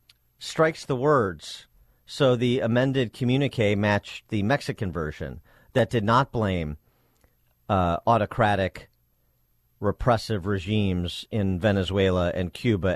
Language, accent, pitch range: English, American, 90-120 Hz